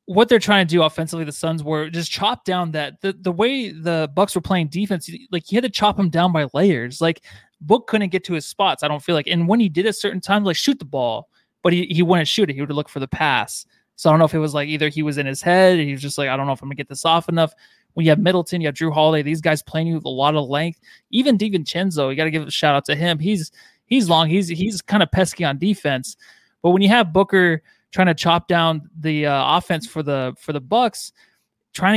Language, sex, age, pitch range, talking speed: English, male, 20-39, 150-185 Hz, 280 wpm